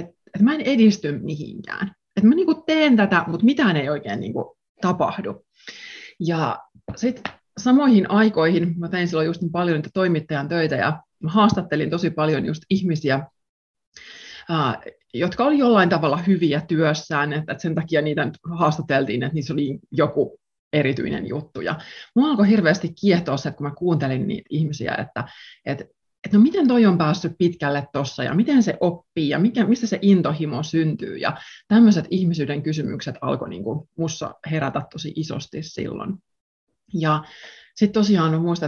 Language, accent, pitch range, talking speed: Finnish, native, 155-205 Hz, 155 wpm